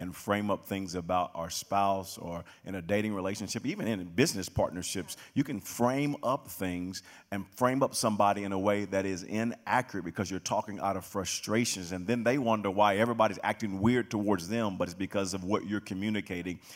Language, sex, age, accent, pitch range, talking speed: English, male, 40-59, American, 90-105 Hz, 195 wpm